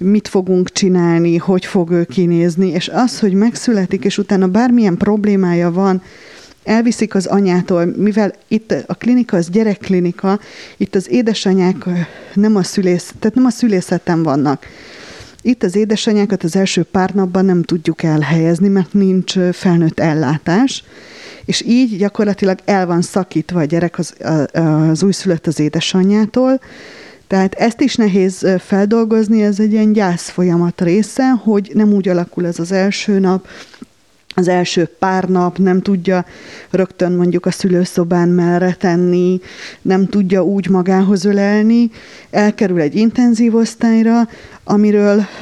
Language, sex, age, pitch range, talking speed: Hungarian, female, 30-49, 175-210 Hz, 135 wpm